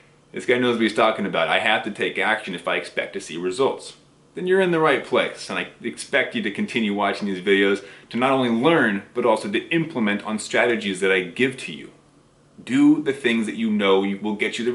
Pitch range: 105-145 Hz